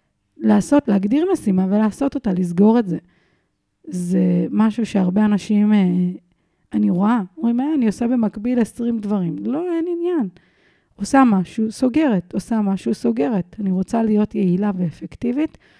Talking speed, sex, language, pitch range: 135 wpm, female, Hebrew, 185-230 Hz